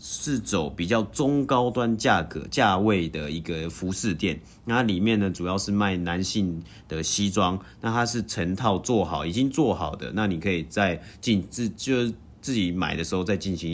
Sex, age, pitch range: male, 30-49, 90-110 Hz